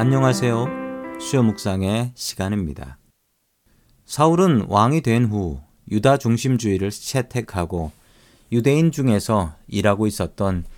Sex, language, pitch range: male, Korean, 100-130 Hz